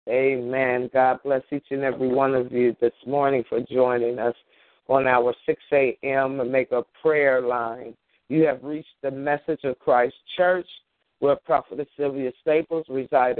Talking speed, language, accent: 155 wpm, English, American